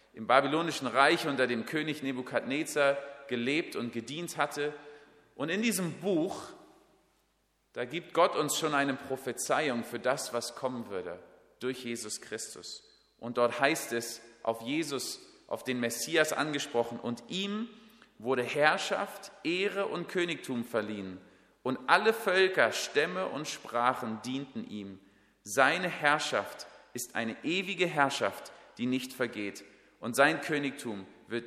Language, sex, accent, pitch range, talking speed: German, male, German, 125-185 Hz, 130 wpm